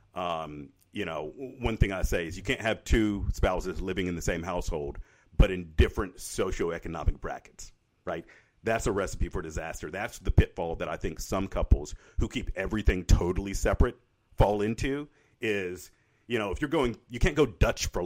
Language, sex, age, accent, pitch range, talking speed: English, male, 50-69, American, 85-110 Hz, 185 wpm